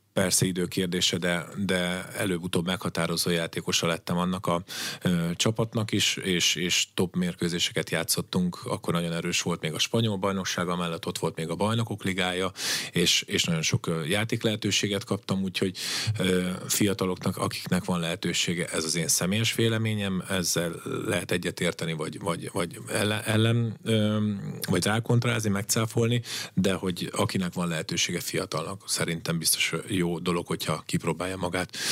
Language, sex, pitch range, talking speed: Hungarian, male, 90-110 Hz, 140 wpm